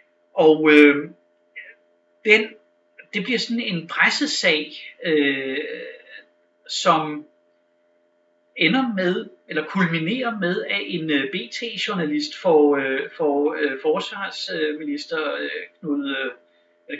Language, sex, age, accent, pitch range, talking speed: Danish, male, 60-79, native, 145-195 Hz, 90 wpm